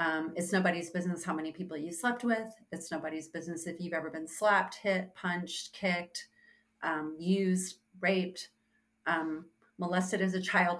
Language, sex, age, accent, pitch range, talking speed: English, female, 30-49, American, 160-195 Hz, 160 wpm